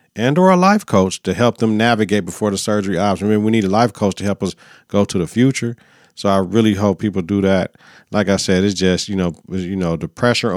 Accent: American